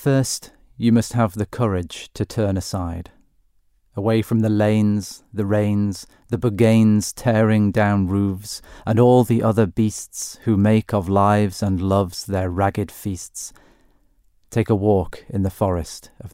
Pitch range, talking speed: 95-120 Hz, 150 wpm